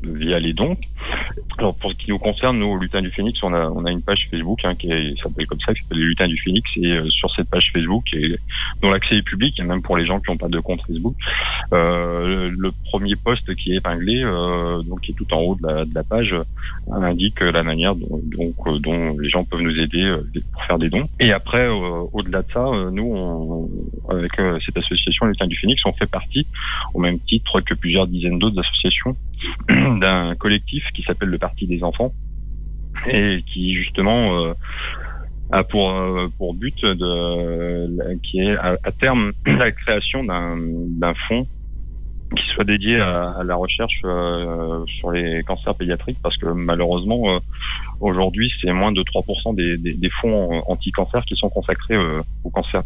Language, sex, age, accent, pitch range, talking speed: French, male, 30-49, French, 85-100 Hz, 205 wpm